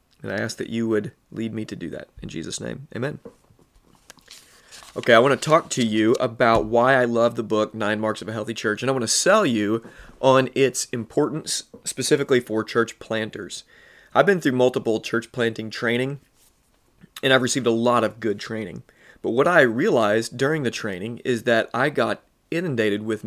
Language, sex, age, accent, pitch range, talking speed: English, male, 30-49, American, 110-130 Hz, 195 wpm